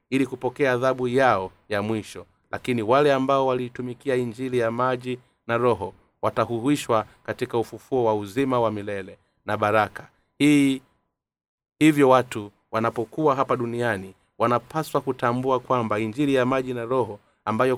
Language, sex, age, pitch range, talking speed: Swahili, male, 30-49, 110-130 Hz, 130 wpm